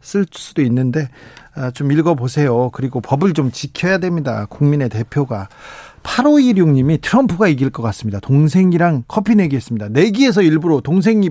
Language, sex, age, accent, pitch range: Korean, male, 40-59, native, 130-180 Hz